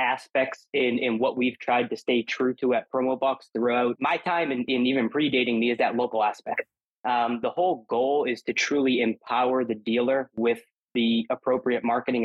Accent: American